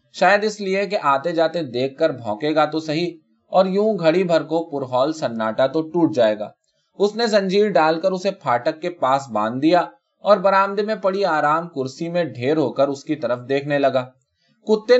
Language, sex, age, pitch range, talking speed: Urdu, male, 20-39, 130-190 Hz, 170 wpm